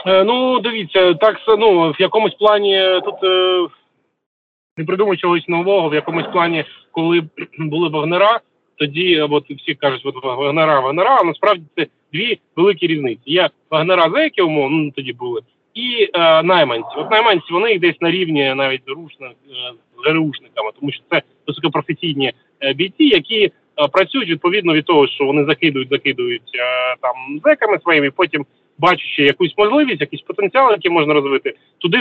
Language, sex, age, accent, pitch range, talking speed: Ukrainian, male, 30-49, native, 145-190 Hz, 155 wpm